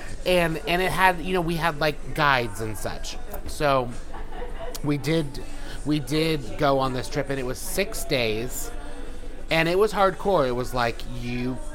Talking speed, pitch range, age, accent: 175 wpm, 115-150 Hz, 30-49, American